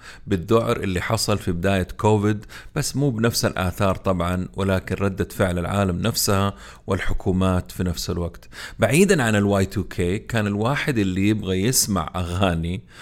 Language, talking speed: Arabic, 145 wpm